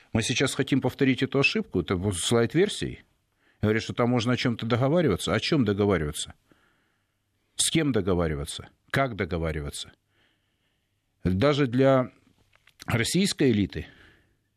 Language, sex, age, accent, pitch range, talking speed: Russian, male, 50-69, native, 95-120 Hz, 110 wpm